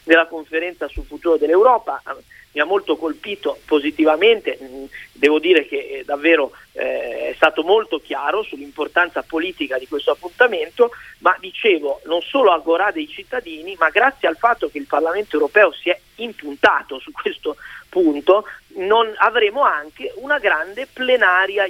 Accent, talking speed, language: native, 145 wpm, Italian